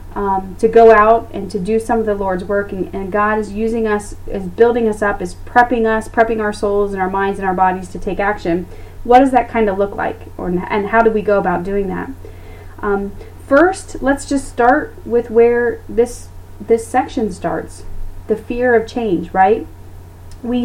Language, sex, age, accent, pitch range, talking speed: English, female, 30-49, American, 185-230 Hz, 200 wpm